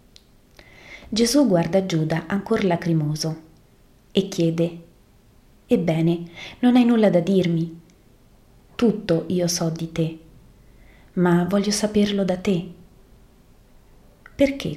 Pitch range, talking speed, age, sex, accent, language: 170-210 Hz, 100 wpm, 30-49, female, native, Italian